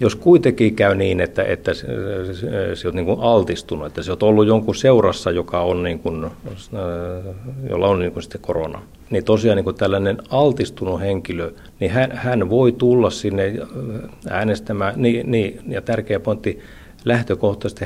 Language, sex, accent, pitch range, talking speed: Finnish, male, native, 90-110 Hz, 150 wpm